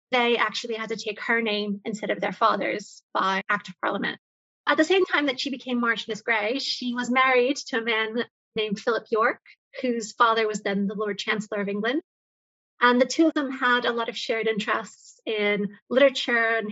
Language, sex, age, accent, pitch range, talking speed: English, female, 30-49, American, 220-255 Hz, 200 wpm